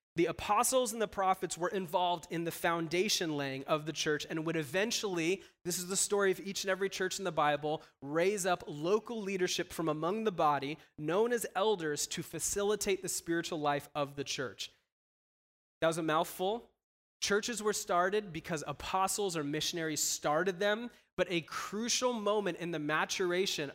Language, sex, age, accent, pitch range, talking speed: English, male, 30-49, American, 155-195 Hz, 170 wpm